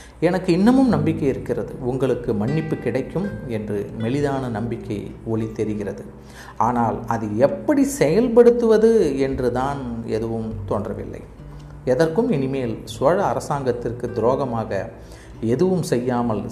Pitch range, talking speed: 110-135 Hz, 95 wpm